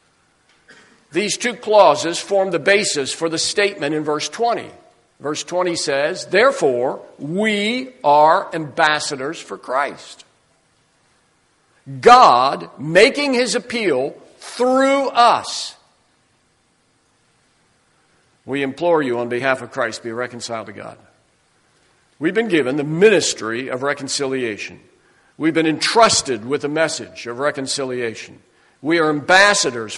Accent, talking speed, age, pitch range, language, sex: American, 115 wpm, 60-79, 140-205 Hz, English, male